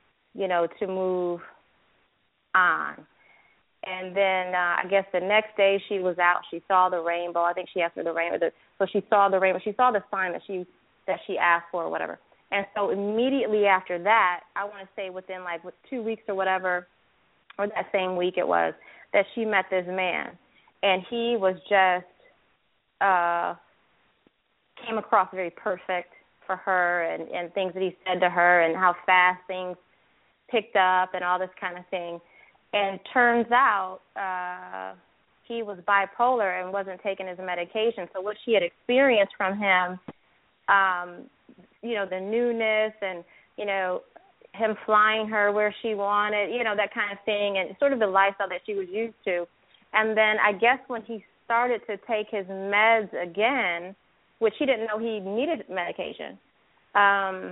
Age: 20-39